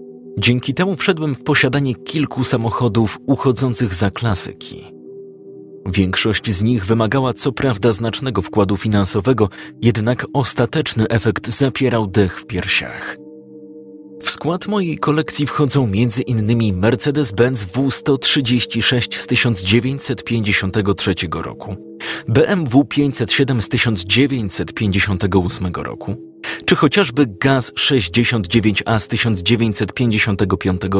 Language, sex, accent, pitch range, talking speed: Polish, male, native, 105-135 Hz, 95 wpm